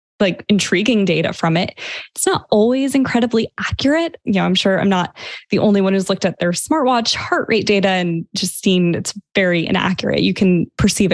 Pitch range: 180-215 Hz